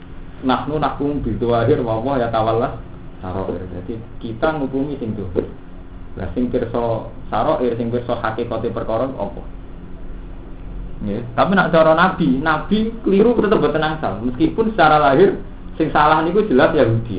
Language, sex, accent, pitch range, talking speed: Indonesian, male, native, 90-130 Hz, 145 wpm